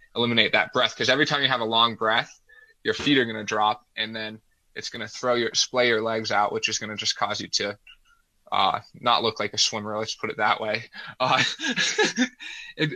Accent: American